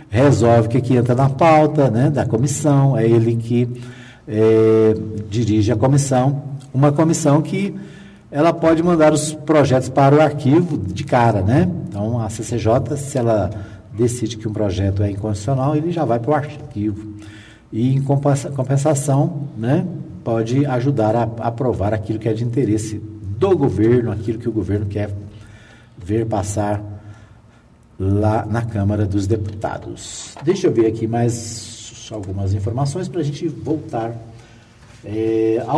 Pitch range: 110-150 Hz